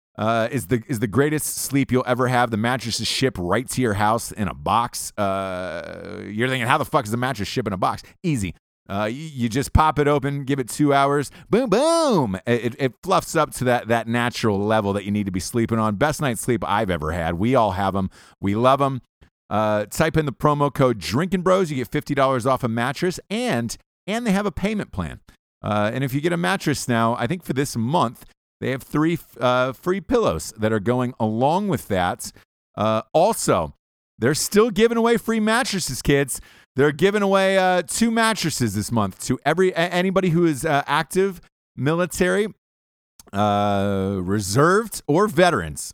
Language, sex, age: English, male, 30-49